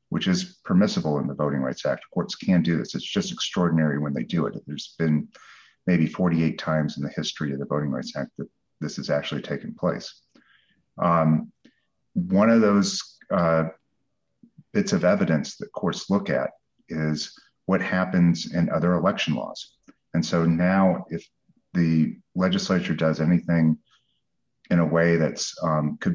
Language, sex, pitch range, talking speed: English, male, 75-100 Hz, 160 wpm